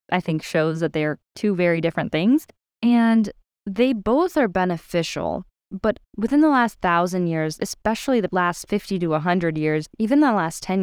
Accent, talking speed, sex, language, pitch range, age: American, 170 wpm, female, English, 170-225 Hz, 10-29